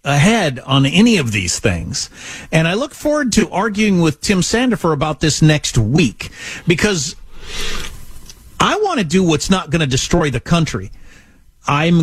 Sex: male